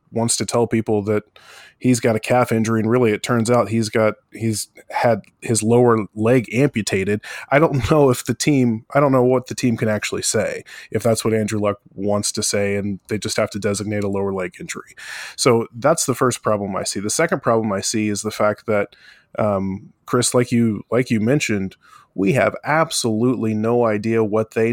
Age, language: 20-39, English